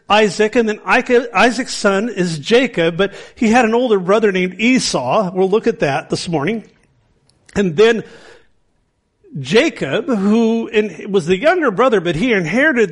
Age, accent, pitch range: 50-69, American, 185-235 Hz